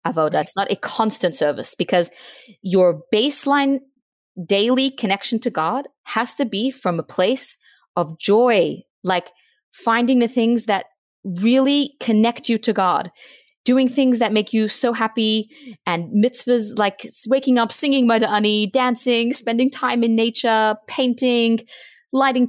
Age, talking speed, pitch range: 20-39, 140 wpm, 195-245 Hz